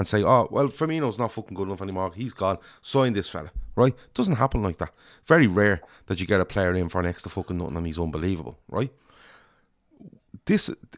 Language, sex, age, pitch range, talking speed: English, male, 30-49, 90-120 Hz, 215 wpm